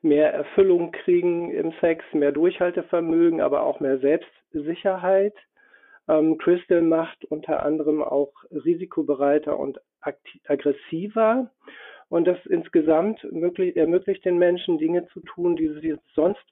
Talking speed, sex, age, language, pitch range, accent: 115 wpm, male, 50-69, German, 150-190 Hz, German